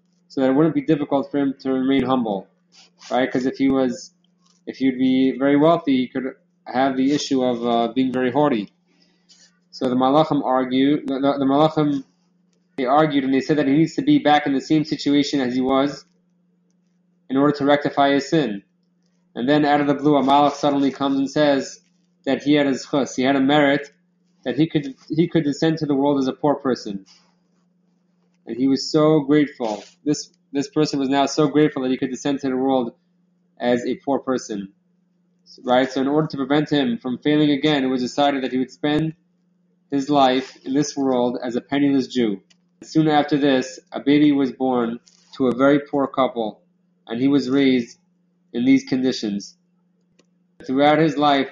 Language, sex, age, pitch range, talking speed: English, male, 20-39, 130-165 Hz, 195 wpm